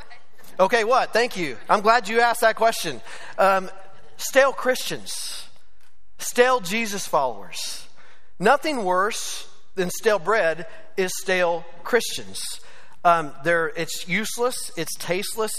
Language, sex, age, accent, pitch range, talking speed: English, male, 40-59, American, 145-185 Hz, 115 wpm